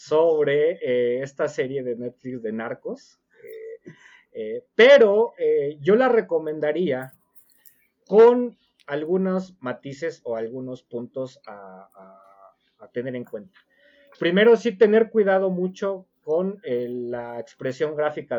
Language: Spanish